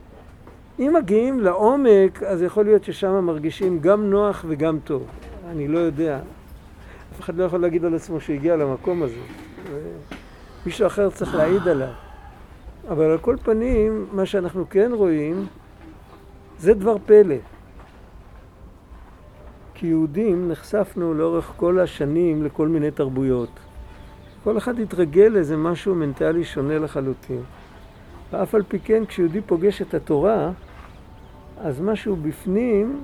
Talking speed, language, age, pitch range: 125 wpm, Hebrew, 50-69, 135-195 Hz